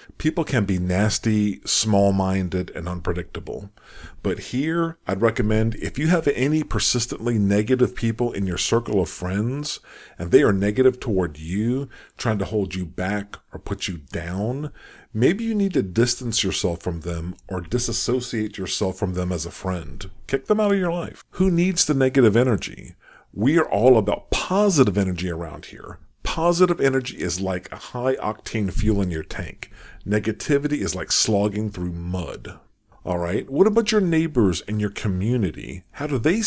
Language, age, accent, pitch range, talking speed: English, 50-69, American, 95-125 Hz, 170 wpm